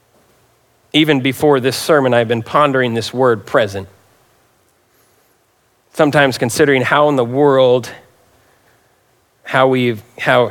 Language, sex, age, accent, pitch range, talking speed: English, male, 40-59, American, 115-135 Hz, 110 wpm